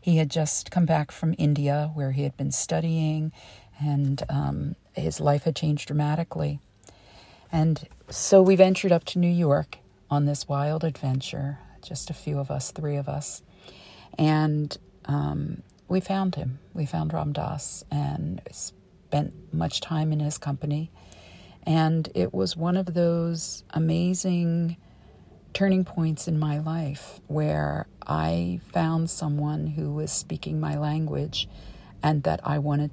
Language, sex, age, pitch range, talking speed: English, female, 50-69, 140-160 Hz, 145 wpm